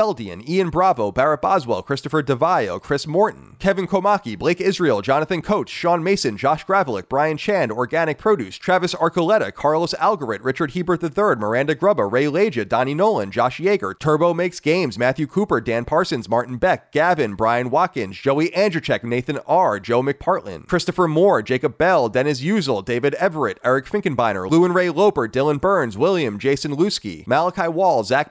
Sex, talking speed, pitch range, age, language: male, 165 wpm, 140-180 Hz, 30-49, English